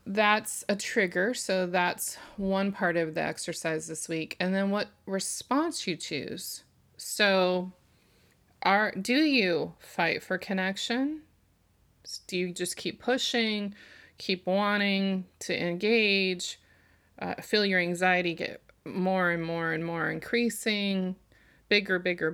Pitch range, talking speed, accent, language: 170-210 Hz, 125 wpm, American, English